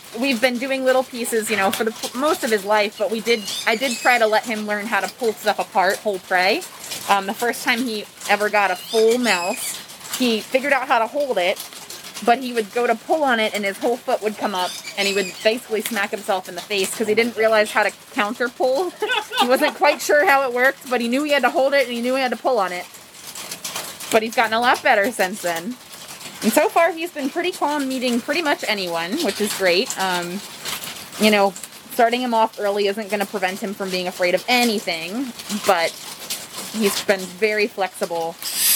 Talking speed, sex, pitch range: 225 wpm, female, 190-245 Hz